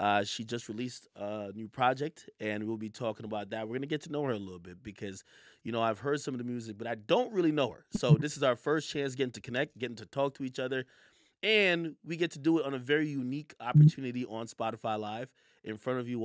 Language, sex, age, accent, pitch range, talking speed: English, male, 30-49, American, 115-150 Hz, 260 wpm